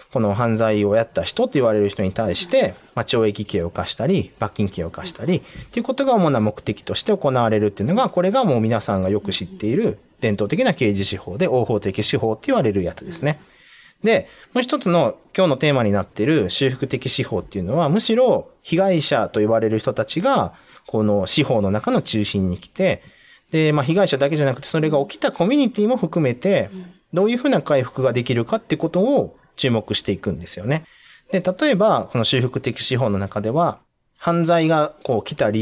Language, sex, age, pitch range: Japanese, male, 40-59, 110-175 Hz